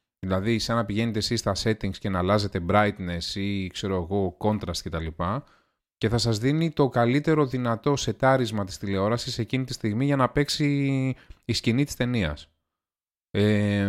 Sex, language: male, Greek